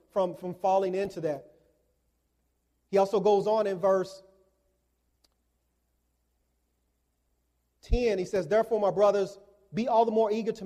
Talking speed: 130 wpm